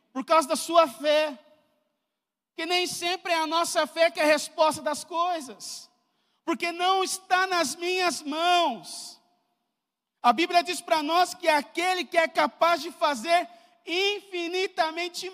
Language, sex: Portuguese, male